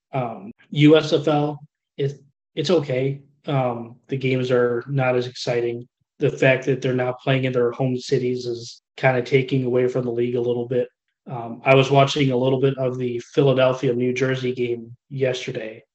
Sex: male